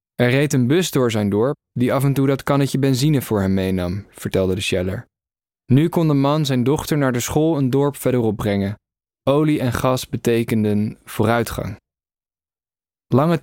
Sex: male